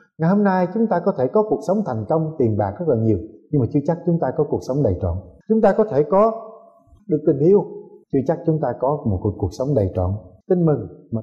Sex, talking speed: male, 260 wpm